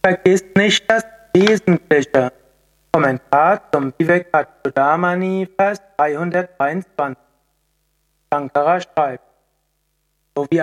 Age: 60-79